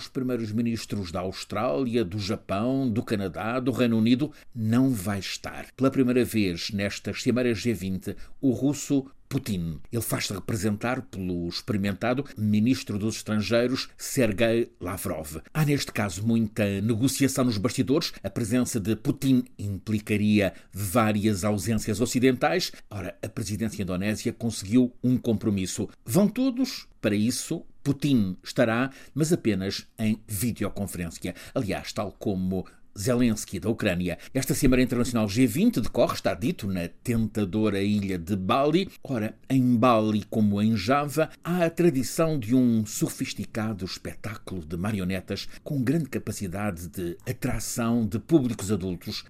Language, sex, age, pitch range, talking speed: Portuguese, male, 50-69, 100-130 Hz, 130 wpm